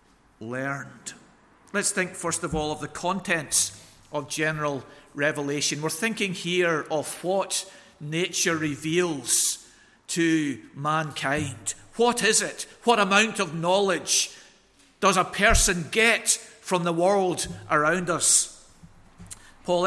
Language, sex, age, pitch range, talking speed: English, male, 50-69, 160-200 Hz, 115 wpm